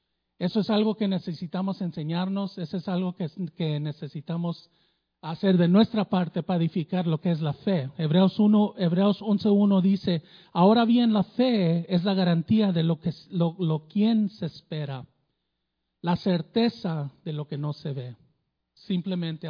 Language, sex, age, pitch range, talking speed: Spanish, male, 50-69, 160-200 Hz, 155 wpm